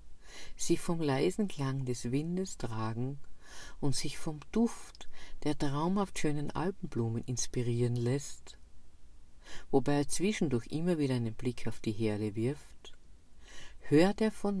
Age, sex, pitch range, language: 50-69, female, 105-155 Hz, German